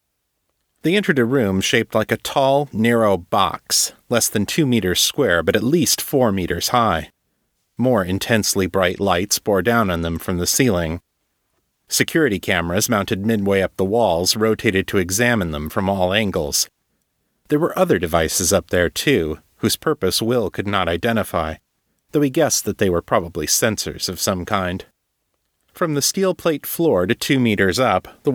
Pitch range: 90-120 Hz